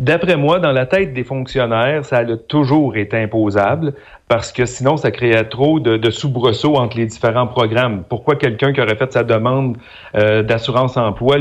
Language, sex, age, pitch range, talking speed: French, male, 40-59, 110-140 Hz, 180 wpm